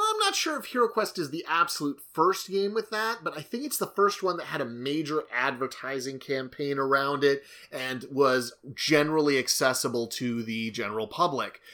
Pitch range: 120-155 Hz